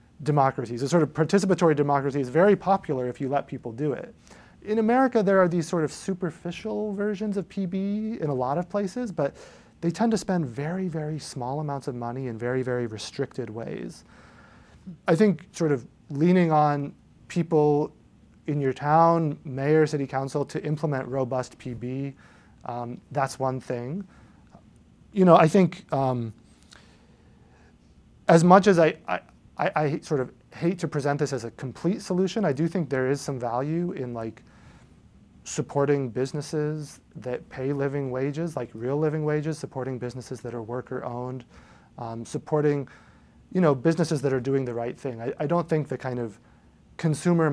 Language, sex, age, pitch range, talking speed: English, male, 30-49, 130-170 Hz, 165 wpm